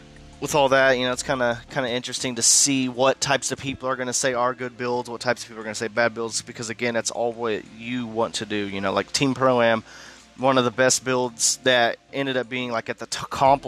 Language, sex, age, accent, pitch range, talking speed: English, male, 30-49, American, 110-130 Hz, 270 wpm